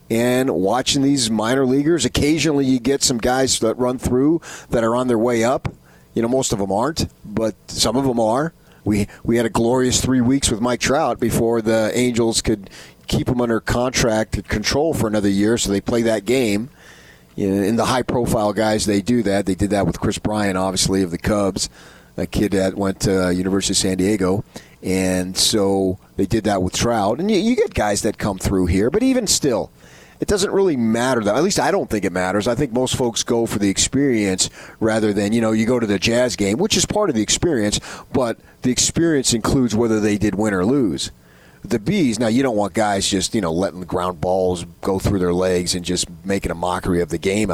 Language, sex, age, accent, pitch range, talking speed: English, male, 30-49, American, 95-120 Hz, 220 wpm